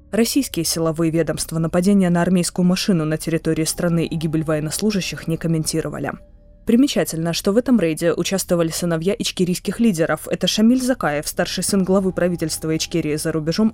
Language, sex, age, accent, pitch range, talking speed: Russian, female, 20-39, native, 160-200 Hz, 150 wpm